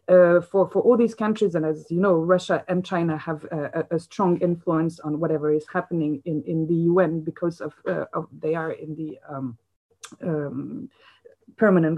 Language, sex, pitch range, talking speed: French, female, 165-195 Hz, 190 wpm